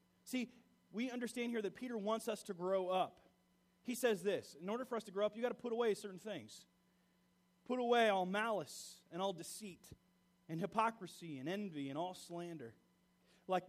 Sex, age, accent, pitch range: male, 30-49, American, 190-260 Hz